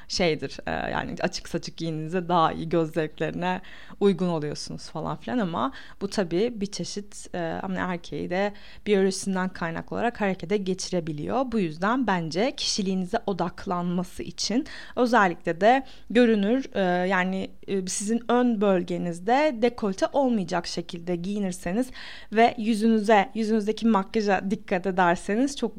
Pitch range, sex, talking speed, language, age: 185-255 Hz, female, 115 wpm, Turkish, 30-49